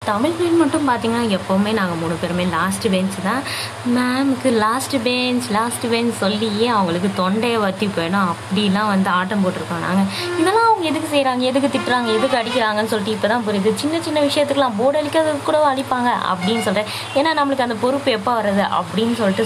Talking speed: 165 wpm